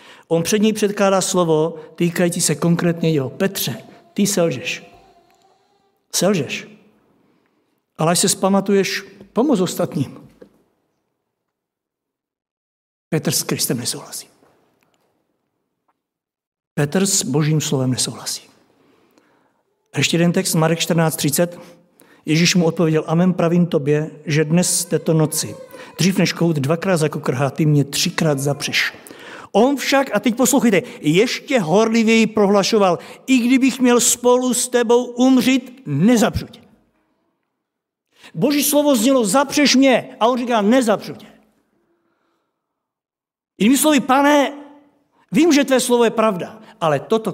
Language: Czech